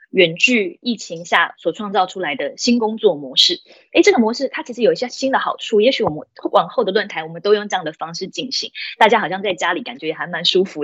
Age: 20-39